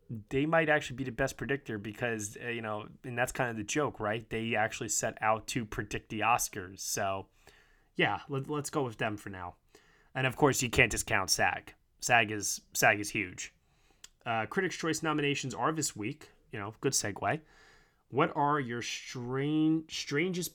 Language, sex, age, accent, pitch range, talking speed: English, male, 20-39, American, 105-135 Hz, 185 wpm